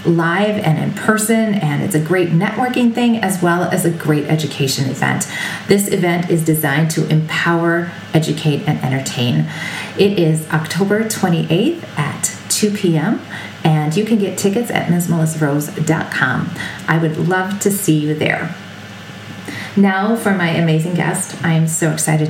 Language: English